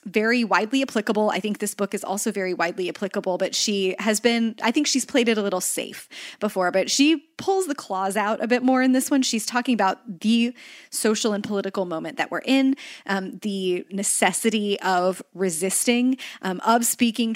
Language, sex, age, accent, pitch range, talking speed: English, female, 20-39, American, 190-240 Hz, 195 wpm